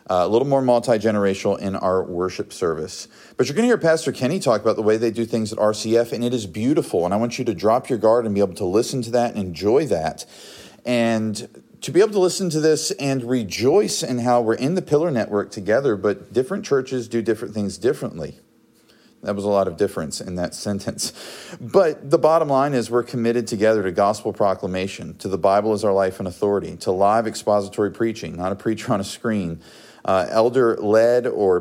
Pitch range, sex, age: 100-120 Hz, male, 40-59